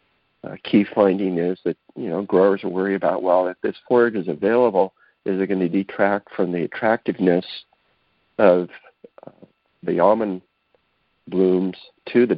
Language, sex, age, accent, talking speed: English, male, 50-69, American, 155 wpm